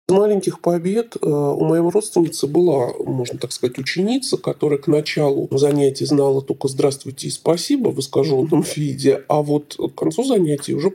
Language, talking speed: Russian, 155 wpm